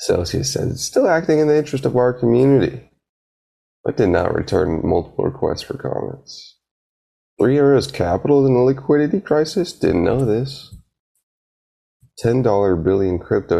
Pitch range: 85-135 Hz